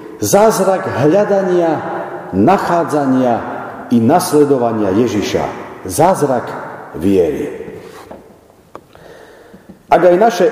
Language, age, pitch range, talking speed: Slovak, 50-69, 125-195 Hz, 65 wpm